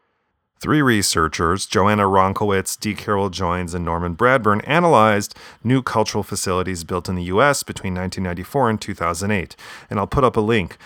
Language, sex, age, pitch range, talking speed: English, male, 30-49, 90-110 Hz, 155 wpm